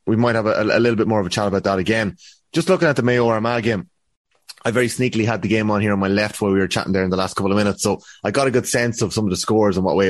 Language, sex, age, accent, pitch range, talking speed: English, male, 30-49, Irish, 95-115 Hz, 340 wpm